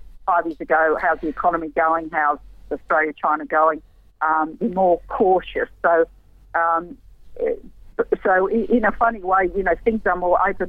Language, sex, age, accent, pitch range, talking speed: English, female, 50-69, Australian, 165-200 Hz, 150 wpm